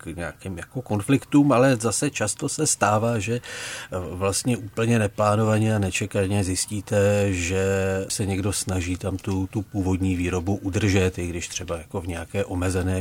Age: 40-59